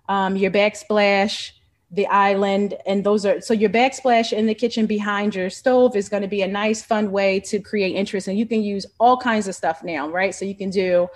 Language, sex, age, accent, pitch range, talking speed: English, female, 30-49, American, 185-215 Hz, 225 wpm